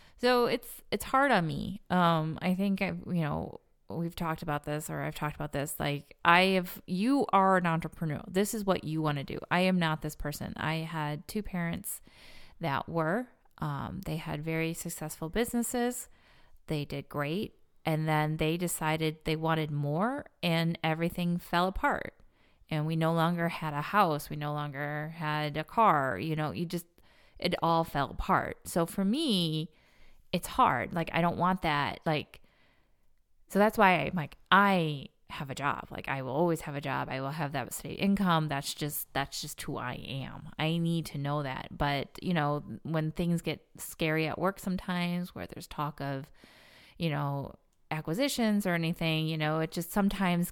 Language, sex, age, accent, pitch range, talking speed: English, female, 30-49, American, 155-185 Hz, 185 wpm